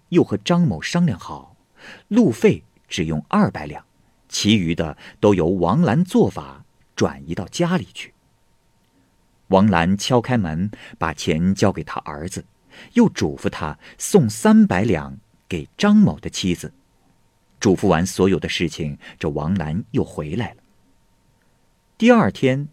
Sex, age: male, 50-69